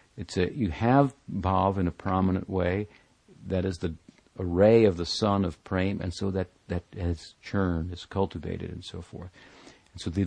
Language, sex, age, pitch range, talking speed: English, male, 60-79, 90-105 Hz, 185 wpm